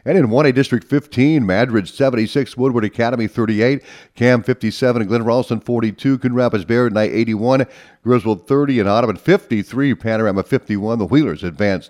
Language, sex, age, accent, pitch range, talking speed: English, male, 50-69, American, 105-130 Hz, 155 wpm